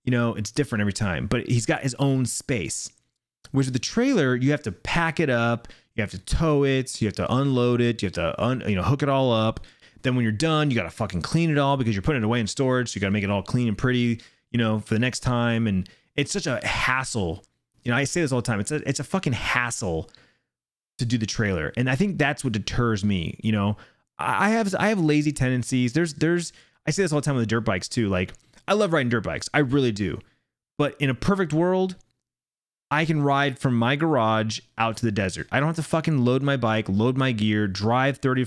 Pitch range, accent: 110-145 Hz, American